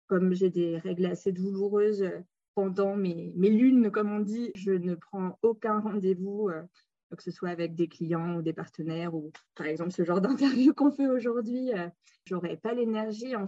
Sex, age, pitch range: female, 20-39, 175-205 Hz